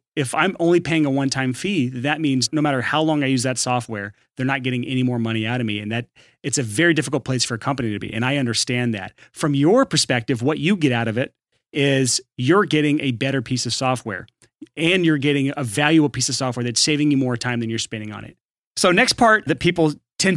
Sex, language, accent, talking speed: male, English, American, 245 wpm